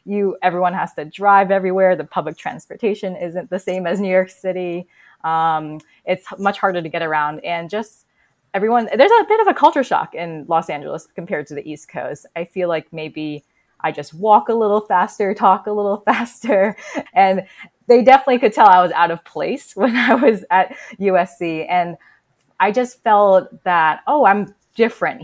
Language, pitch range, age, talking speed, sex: English, 165-210 Hz, 20-39, 185 wpm, female